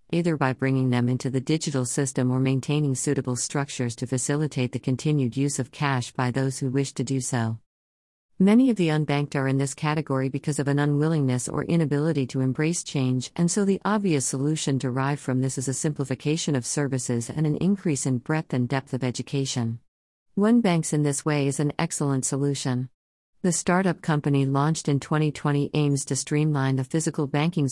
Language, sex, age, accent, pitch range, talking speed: English, female, 50-69, American, 130-150 Hz, 185 wpm